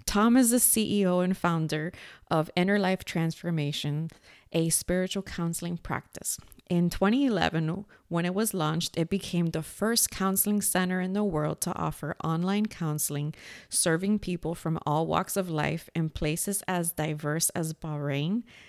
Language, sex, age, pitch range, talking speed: English, female, 30-49, 160-190 Hz, 150 wpm